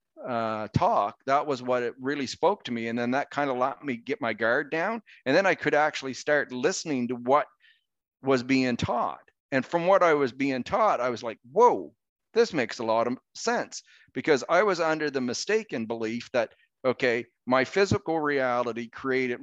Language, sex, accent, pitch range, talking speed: English, male, American, 115-145 Hz, 195 wpm